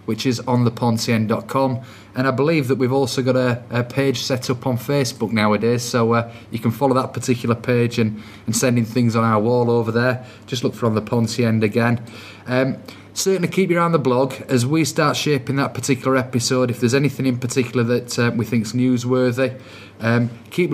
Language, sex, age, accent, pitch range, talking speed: English, male, 30-49, British, 115-130 Hz, 210 wpm